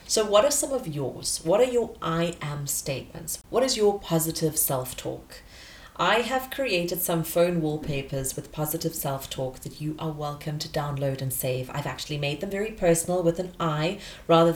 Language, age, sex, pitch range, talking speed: English, 30-49, female, 145-180 Hz, 180 wpm